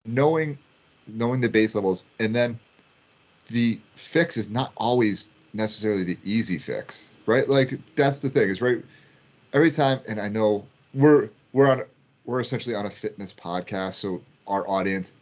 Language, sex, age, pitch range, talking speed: English, male, 30-49, 95-125 Hz, 160 wpm